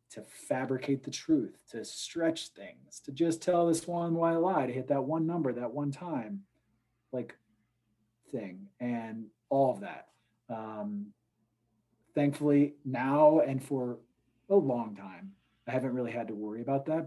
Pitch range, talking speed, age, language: 115-145 Hz, 160 wpm, 30-49, English